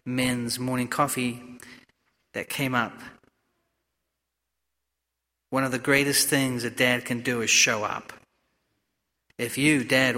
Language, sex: English, male